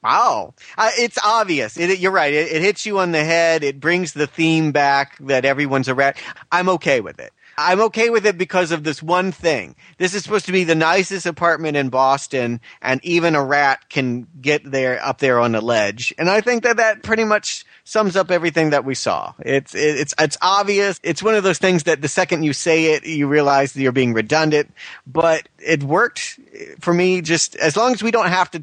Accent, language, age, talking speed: American, English, 30-49, 220 wpm